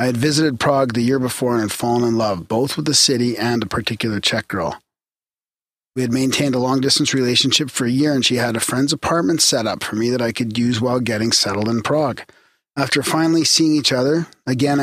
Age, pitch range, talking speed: 40-59, 120-145 Hz, 225 wpm